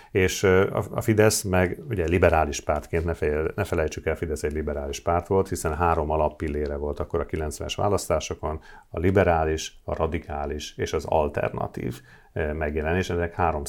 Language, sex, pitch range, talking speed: English, male, 80-105 Hz, 155 wpm